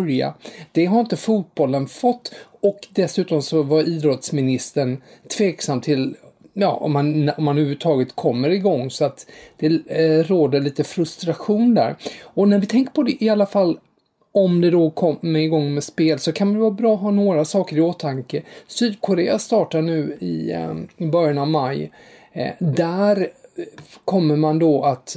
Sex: male